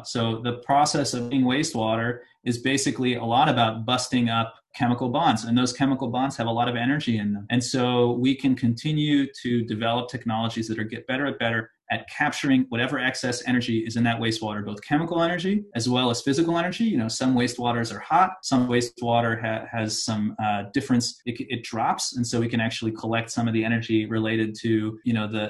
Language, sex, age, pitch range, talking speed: English, male, 30-49, 115-130 Hz, 205 wpm